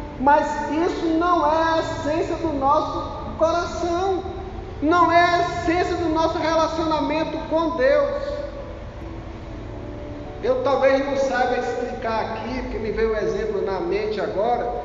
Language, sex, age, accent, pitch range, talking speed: Portuguese, male, 40-59, Brazilian, 230-330 Hz, 130 wpm